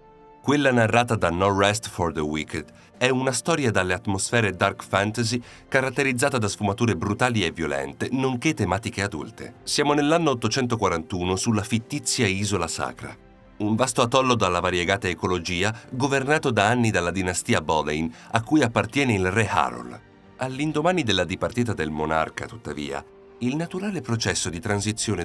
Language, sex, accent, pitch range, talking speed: Italian, male, native, 90-120 Hz, 145 wpm